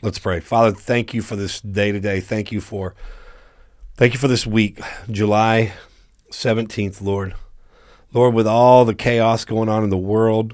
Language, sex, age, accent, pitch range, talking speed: English, male, 40-59, American, 95-115 Hz, 170 wpm